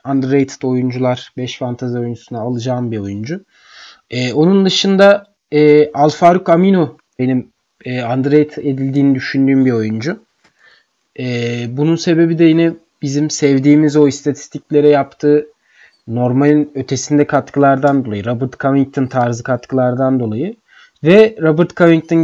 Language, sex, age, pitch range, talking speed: Turkish, male, 30-49, 135-165 Hz, 115 wpm